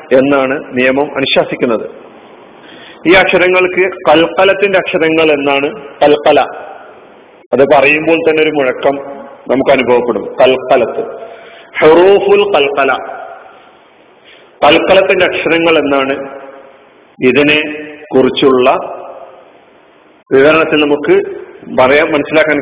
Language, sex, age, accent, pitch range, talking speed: Malayalam, male, 40-59, native, 140-195 Hz, 70 wpm